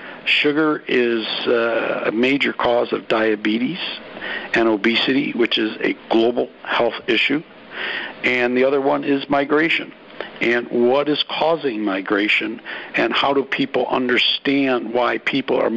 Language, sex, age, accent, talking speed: English, male, 60-79, American, 135 wpm